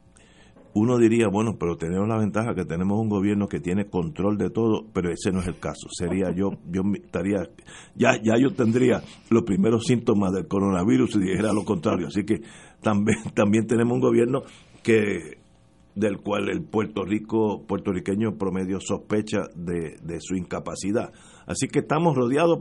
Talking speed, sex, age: 165 wpm, male, 60-79